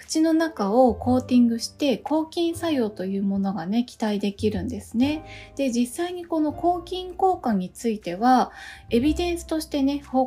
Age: 20-39